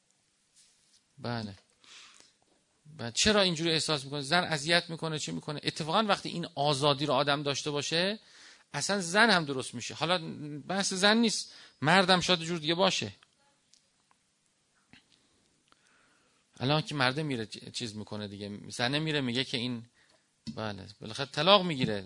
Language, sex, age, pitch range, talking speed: Persian, male, 40-59, 140-195 Hz, 135 wpm